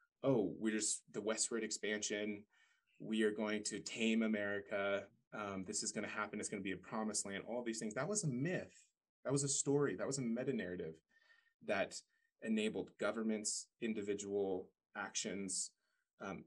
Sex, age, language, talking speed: male, 20-39, English, 170 wpm